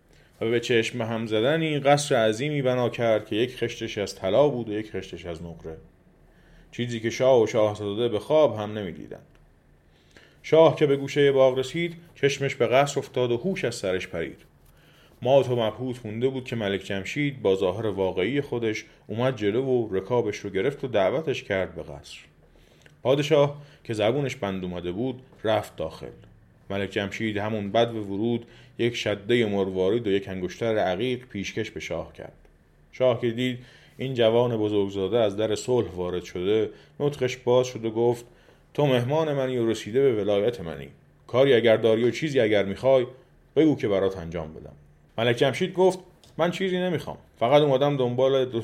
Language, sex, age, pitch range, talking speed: Persian, male, 30-49, 100-130 Hz, 170 wpm